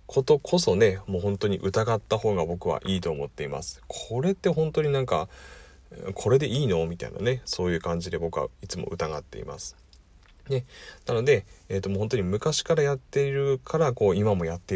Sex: male